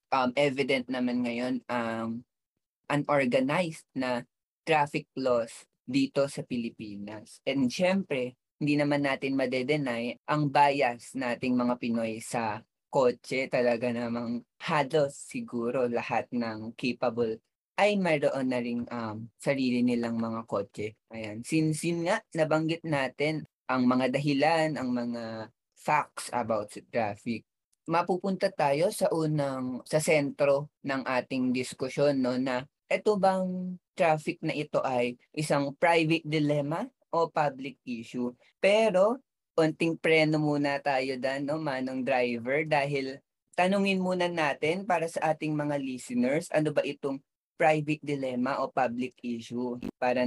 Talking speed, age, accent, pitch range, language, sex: 125 wpm, 20-39, native, 120-155 Hz, Filipino, female